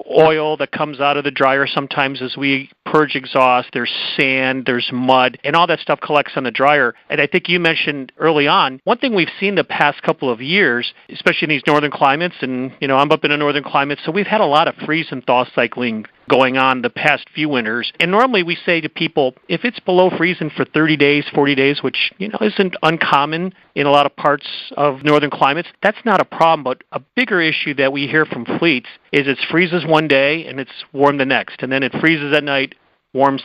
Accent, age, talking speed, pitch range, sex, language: American, 40-59, 230 wpm, 135-165 Hz, male, English